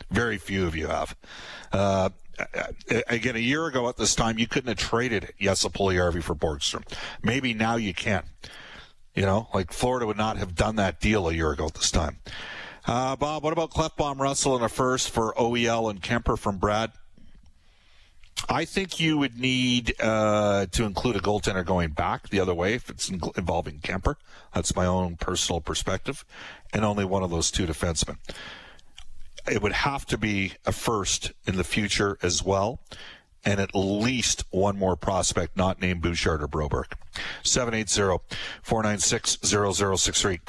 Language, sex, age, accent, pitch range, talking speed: English, male, 50-69, American, 95-125 Hz, 165 wpm